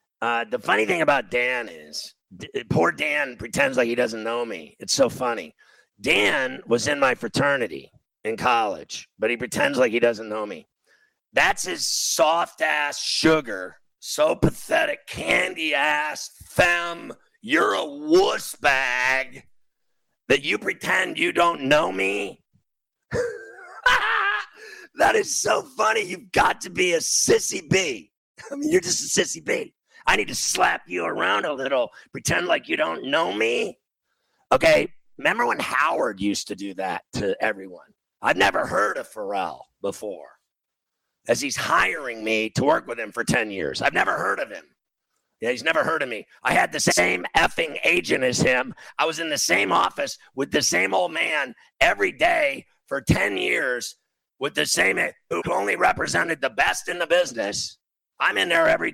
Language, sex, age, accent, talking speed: English, male, 50-69, American, 165 wpm